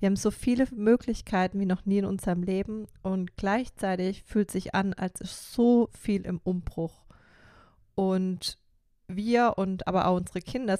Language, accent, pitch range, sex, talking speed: German, German, 175-205 Hz, female, 160 wpm